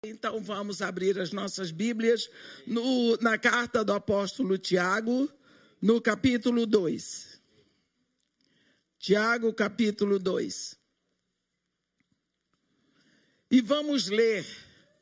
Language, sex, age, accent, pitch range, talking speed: Portuguese, male, 60-79, Brazilian, 210-265 Hz, 85 wpm